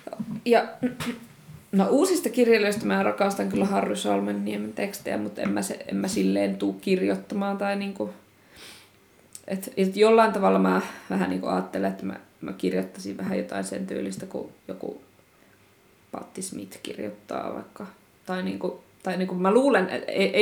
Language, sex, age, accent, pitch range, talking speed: Finnish, female, 20-39, native, 160-200 Hz, 150 wpm